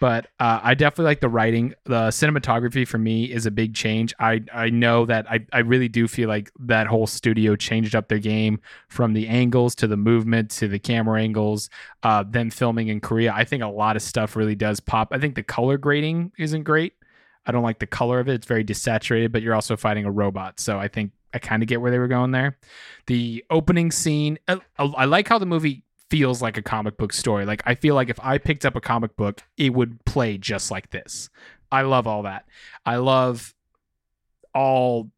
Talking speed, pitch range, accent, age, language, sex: 220 wpm, 110-135 Hz, American, 20-39, English, male